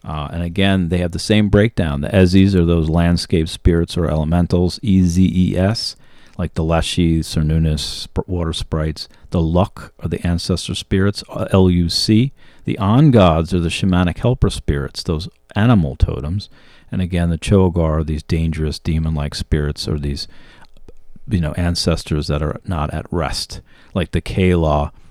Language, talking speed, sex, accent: English, 165 wpm, male, American